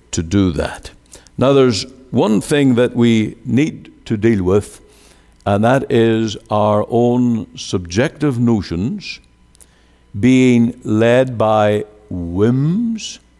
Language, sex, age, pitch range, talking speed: English, male, 60-79, 85-120 Hz, 105 wpm